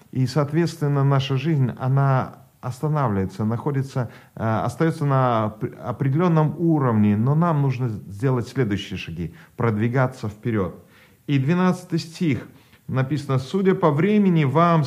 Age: 40-59